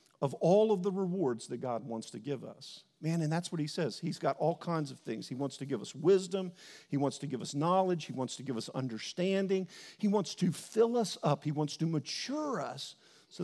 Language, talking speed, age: English, 235 wpm, 50-69